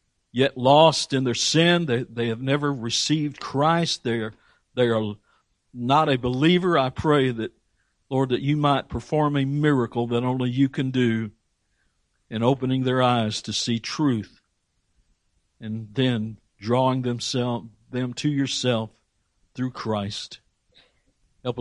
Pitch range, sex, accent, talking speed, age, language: 110-150 Hz, male, American, 140 wpm, 60-79, English